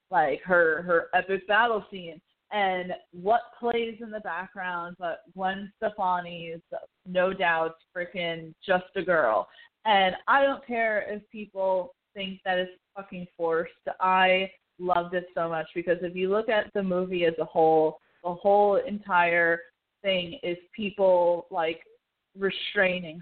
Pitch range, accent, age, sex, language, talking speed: 170-190 Hz, American, 20-39, female, English, 140 wpm